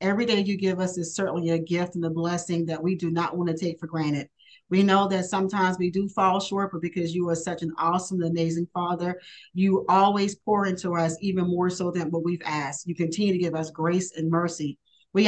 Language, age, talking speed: English, 40-59, 230 wpm